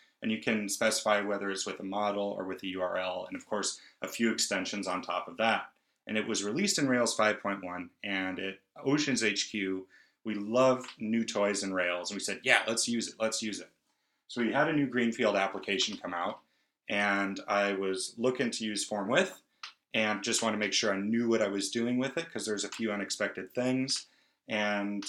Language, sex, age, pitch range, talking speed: English, male, 30-49, 100-125 Hz, 210 wpm